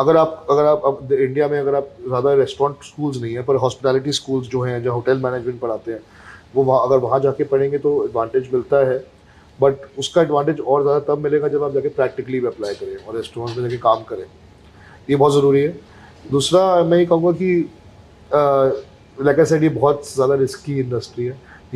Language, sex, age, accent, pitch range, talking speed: Hindi, male, 30-49, native, 125-160 Hz, 200 wpm